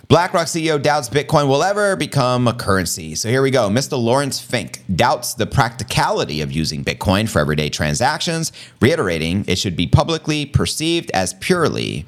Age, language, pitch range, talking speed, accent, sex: 30-49, English, 95-150 Hz, 165 wpm, American, male